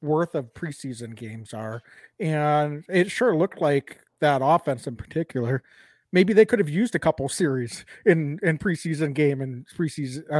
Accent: American